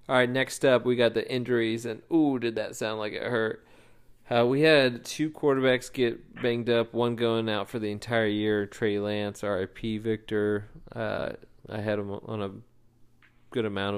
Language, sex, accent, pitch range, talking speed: English, male, American, 100-115 Hz, 185 wpm